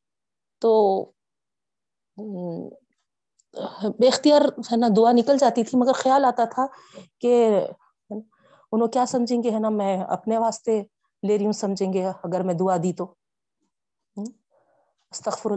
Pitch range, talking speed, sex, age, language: 195-235 Hz, 125 wpm, female, 30-49, Urdu